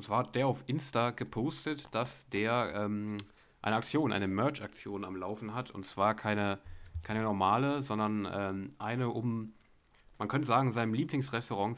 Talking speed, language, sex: 160 wpm, German, male